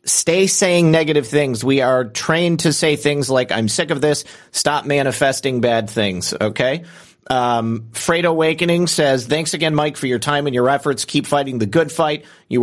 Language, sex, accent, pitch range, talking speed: English, male, American, 135-165 Hz, 185 wpm